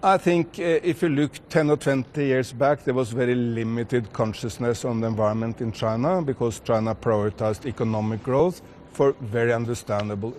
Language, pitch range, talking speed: English, 115-135 Hz, 165 wpm